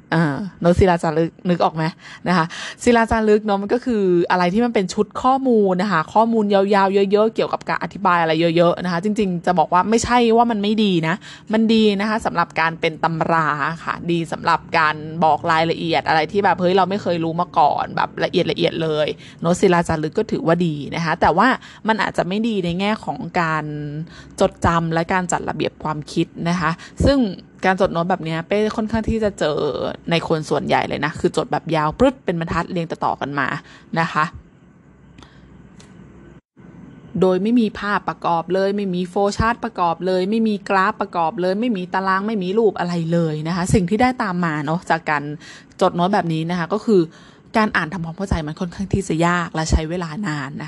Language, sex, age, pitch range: Thai, female, 20-39, 165-205 Hz